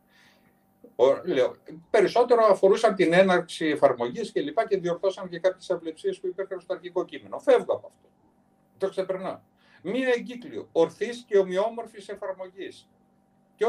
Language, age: Greek, 60-79